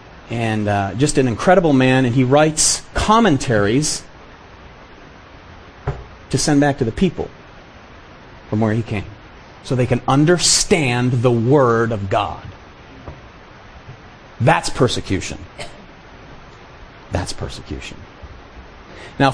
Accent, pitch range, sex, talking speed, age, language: American, 115-175 Hz, male, 100 wpm, 40-59, English